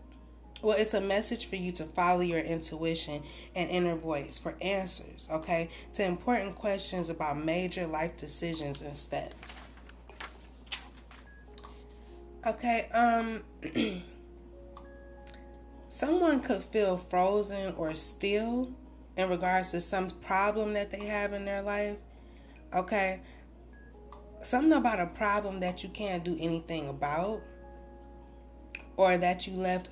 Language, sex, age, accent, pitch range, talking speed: English, female, 20-39, American, 145-200 Hz, 120 wpm